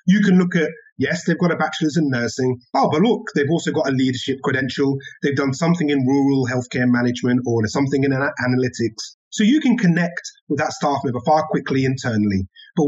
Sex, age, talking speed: male, 30-49, 200 wpm